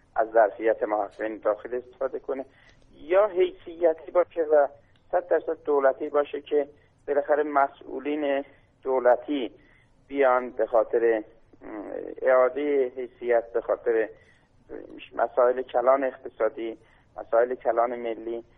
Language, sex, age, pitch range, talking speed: Persian, male, 50-69, 120-155 Hz, 100 wpm